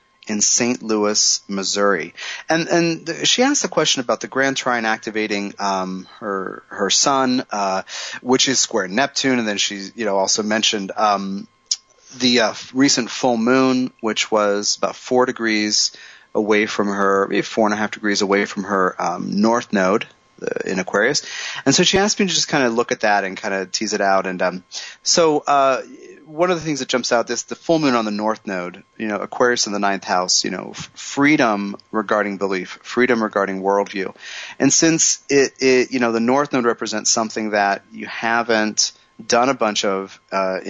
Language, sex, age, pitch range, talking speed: English, male, 30-49, 100-130 Hz, 190 wpm